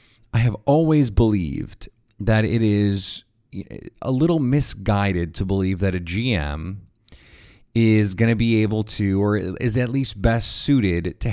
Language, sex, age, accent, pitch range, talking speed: English, male, 30-49, American, 95-115 Hz, 150 wpm